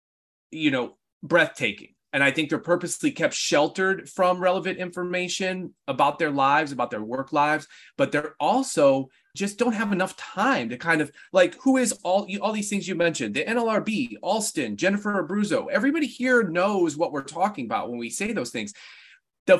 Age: 30-49